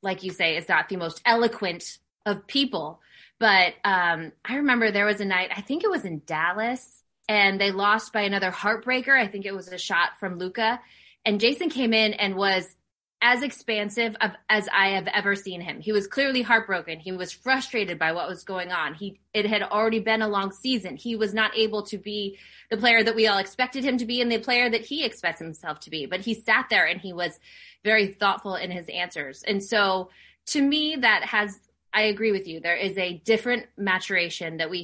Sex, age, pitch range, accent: female, 20-39, 180-230 Hz, American